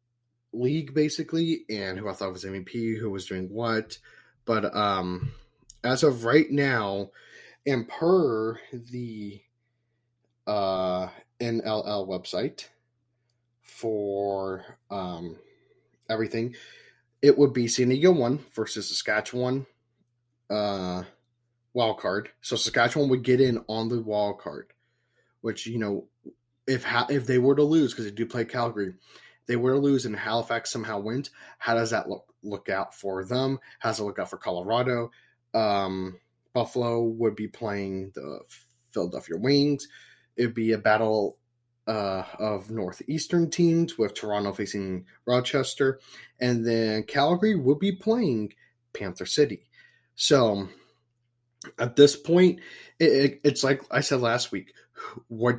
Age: 20-39